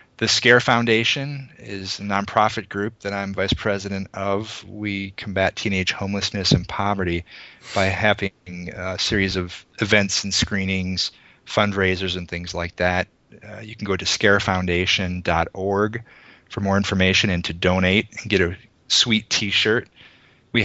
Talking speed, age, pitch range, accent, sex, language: 145 wpm, 30-49, 90-105 Hz, American, male, English